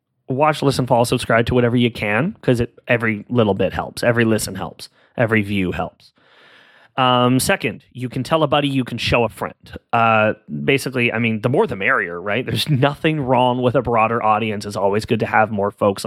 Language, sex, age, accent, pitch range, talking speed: English, male, 30-49, American, 110-140 Hz, 205 wpm